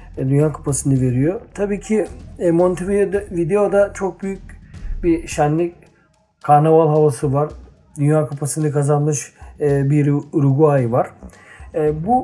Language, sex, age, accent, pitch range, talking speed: Turkish, male, 40-59, native, 145-180 Hz, 100 wpm